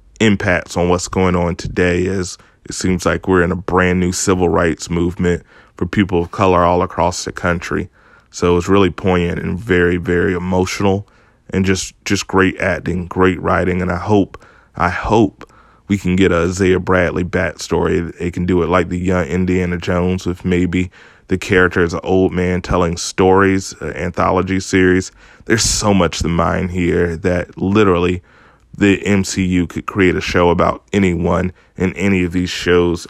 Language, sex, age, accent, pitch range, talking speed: English, male, 20-39, American, 90-95 Hz, 175 wpm